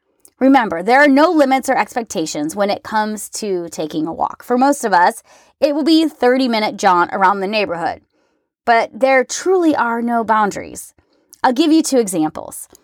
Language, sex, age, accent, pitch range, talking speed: English, female, 20-39, American, 205-280 Hz, 180 wpm